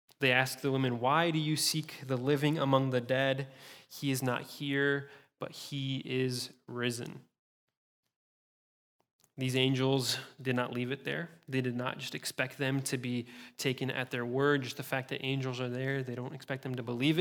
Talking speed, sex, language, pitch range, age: 185 wpm, male, English, 125-140 Hz, 20-39